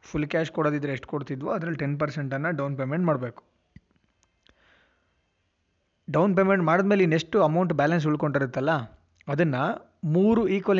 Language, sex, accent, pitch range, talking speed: Kannada, male, native, 130-165 Hz, 115 wpm